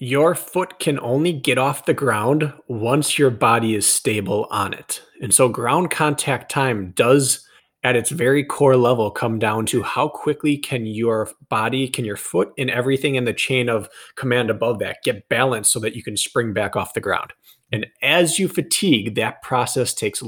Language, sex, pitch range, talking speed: English, male, 110-135 Hz, 190 wpm